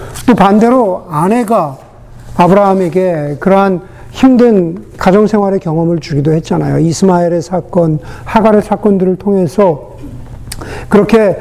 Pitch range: 140-200 Hz